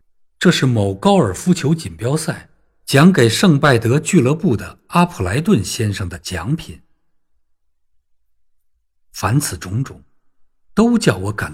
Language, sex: Chinese, male